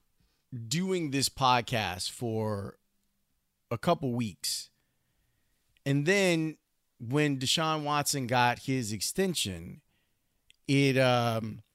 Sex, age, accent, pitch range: male, 30-49, American, 110-145 Hz